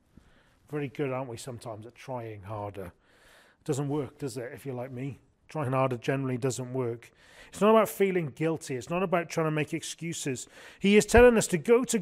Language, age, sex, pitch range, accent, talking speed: English, 30-49, male, 135-205 Hz, British, 200 wpm